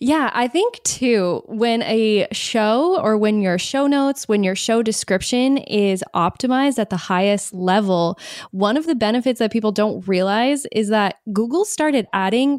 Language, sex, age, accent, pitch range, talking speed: English, female, 10-29, American, 190-250 Hz, 165 wpm